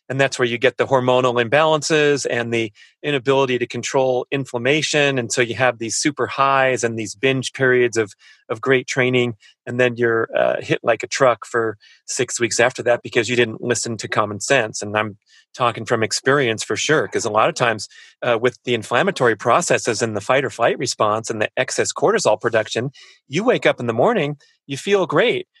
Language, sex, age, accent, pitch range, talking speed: English, male, 30-49, American, 120-145 Hz, 200 wpm